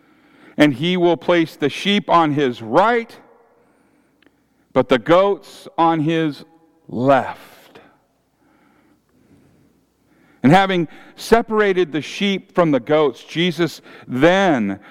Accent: American